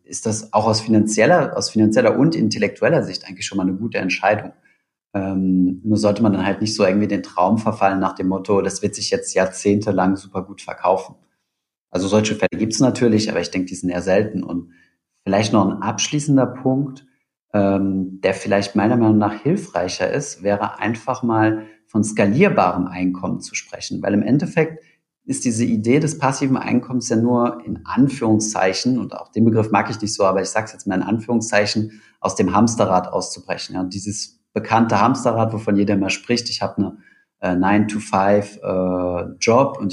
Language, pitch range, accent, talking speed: German, 95-115 Hz, German, 185 wpm